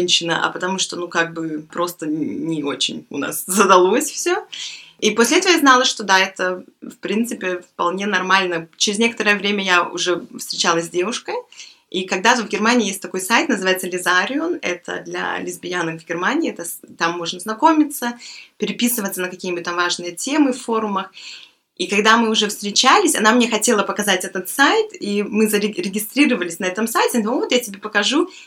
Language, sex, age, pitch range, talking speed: Russian, female, 20-39, 180-235 Hz, 175 wpm